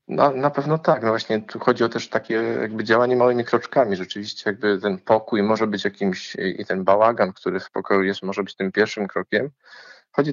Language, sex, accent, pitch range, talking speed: Polish, male, native, 105-120 Hz, 205 wpm